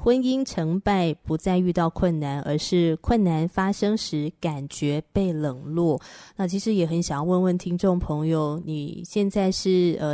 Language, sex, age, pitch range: Chinese, female, 20-39, 165-200 Hz